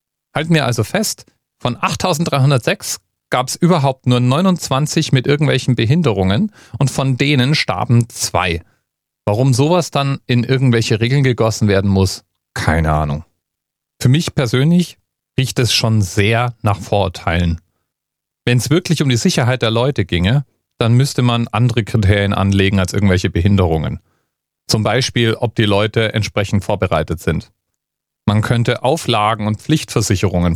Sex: male